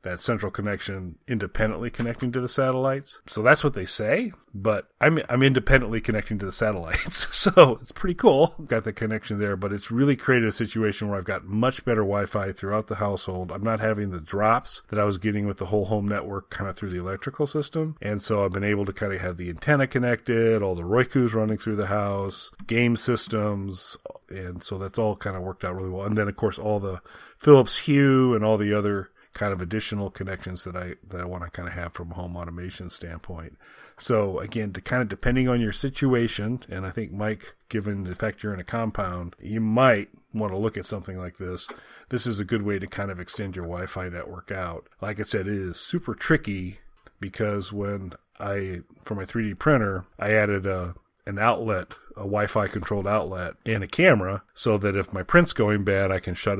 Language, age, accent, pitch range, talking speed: English, 40-59, American, 95-110 Hz, 215 wpm